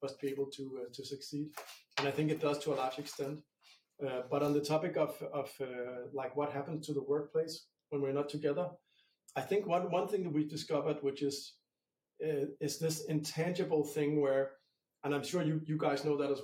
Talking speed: 220 wpm